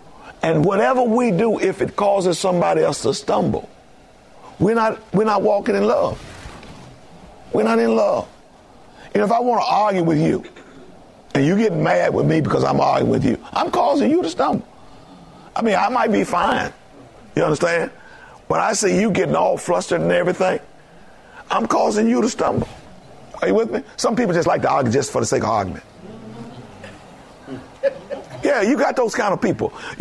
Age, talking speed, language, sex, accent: 50-69, 185 wpm, English, male, American